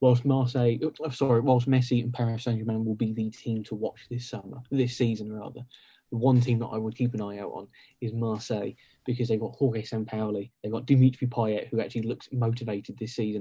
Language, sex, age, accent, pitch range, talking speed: English, male, 20-39, British, 110-125 Hz, 210 wpm